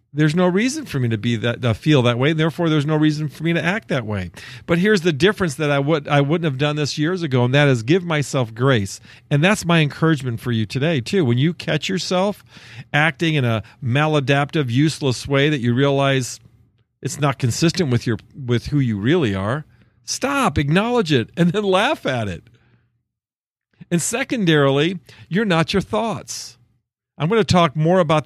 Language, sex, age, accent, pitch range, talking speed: English, male, 50-69, American, 120-180 Hz, 200 wpm